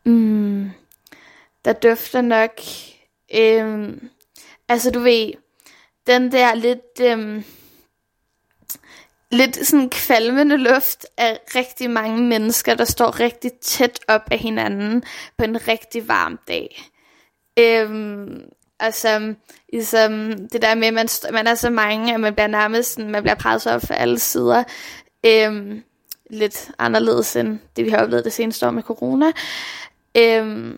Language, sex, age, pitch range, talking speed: Danish, female, 10-29, 215-245 Hz, 135 wpm